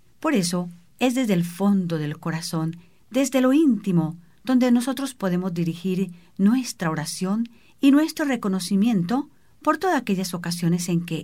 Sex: female